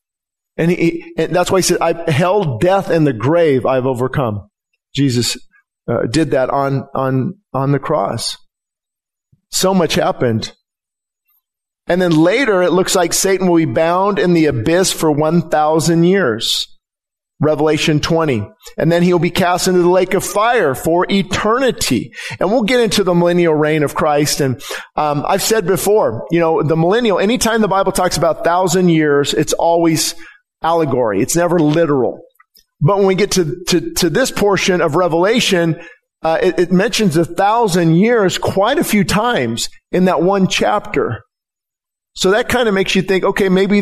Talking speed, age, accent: 170 wpm, 40-59, American